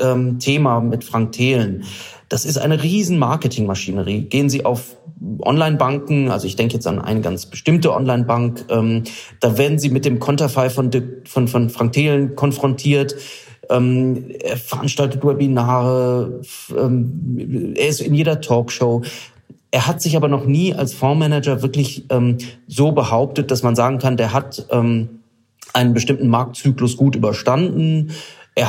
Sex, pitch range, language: male, 120-140 Hz, German